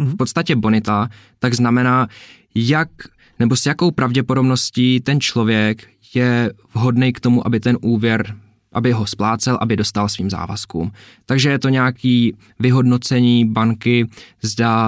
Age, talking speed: 20-39, 135 wpm